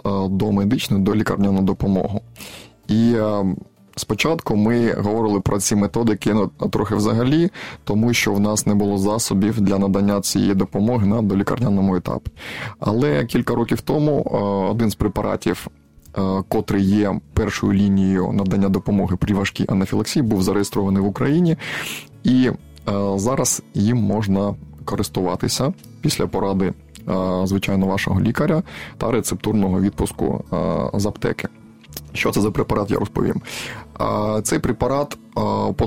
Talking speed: 125 wpm